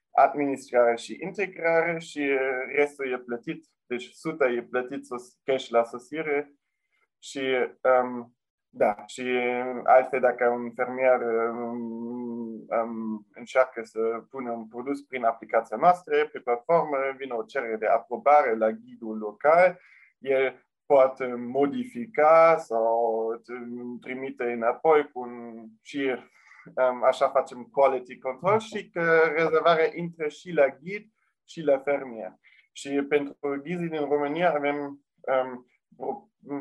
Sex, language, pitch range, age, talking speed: male, Romanian, 120-145 Hz, 20-39, 125 wpm